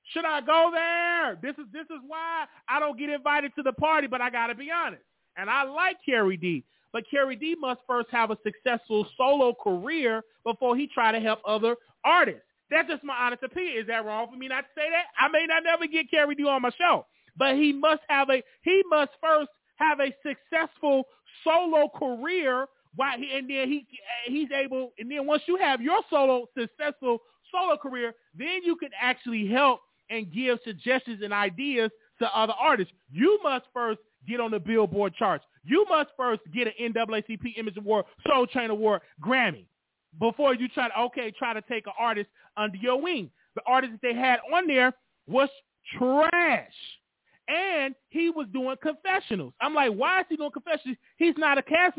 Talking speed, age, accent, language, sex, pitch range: 195 wpm, 30-49, American, English, male, 235-310 Hz